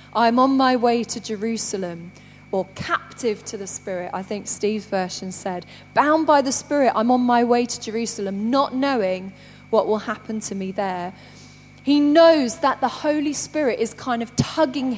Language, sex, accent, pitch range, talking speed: English, female, British, 215-295 Hz, 175 wpm